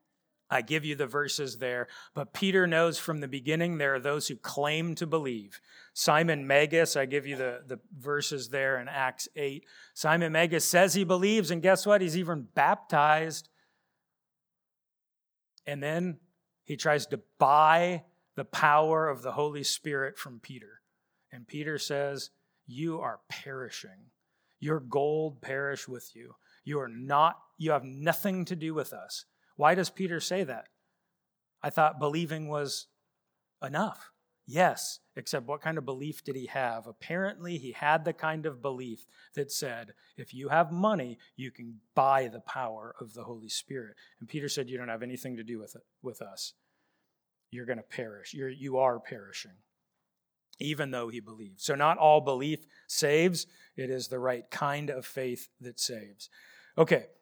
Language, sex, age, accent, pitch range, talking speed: English, male, 40-59, American, 130-165 Hz, 165 wpm